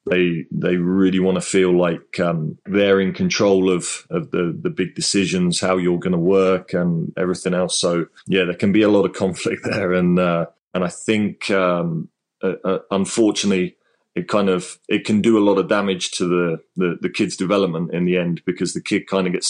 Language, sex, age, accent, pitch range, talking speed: English, male, 30-49, British, 90-95 Hz, 210 wpm